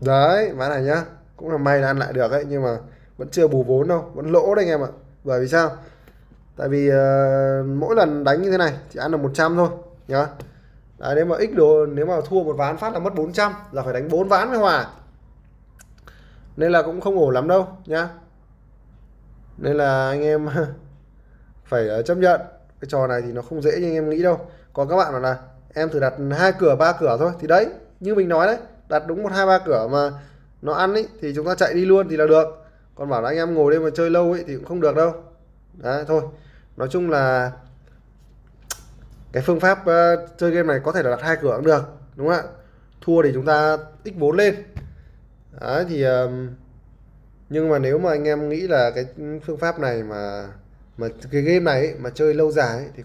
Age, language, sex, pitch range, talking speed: 20-39, English, male, 130-170 Hz, 225 wpm